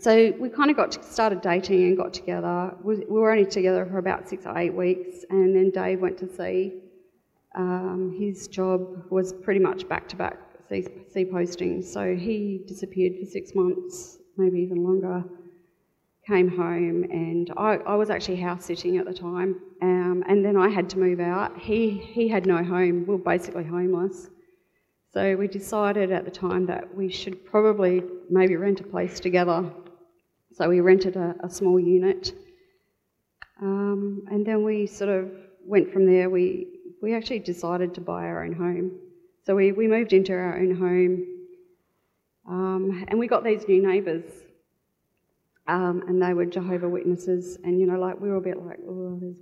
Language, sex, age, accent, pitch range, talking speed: English, female, 30-49, Australian, 180-200 Hz, 175 wpm